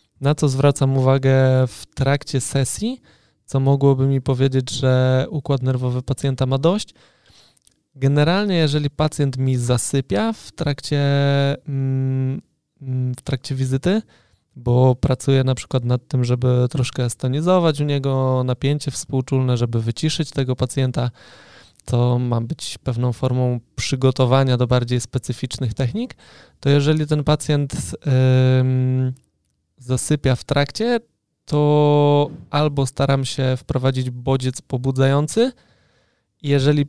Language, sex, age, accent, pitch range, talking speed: Polish, male, 20-39, native, 125-140 Hz, 110 wpm